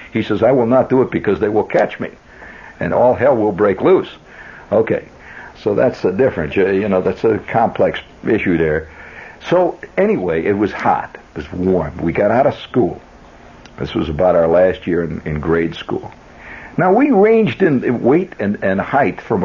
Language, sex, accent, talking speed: English, male, American, 190 wpm